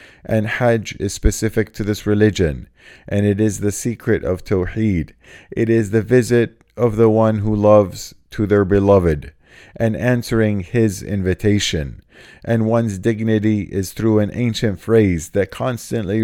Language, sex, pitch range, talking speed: English, male, 100-110 Hz, 150 wpm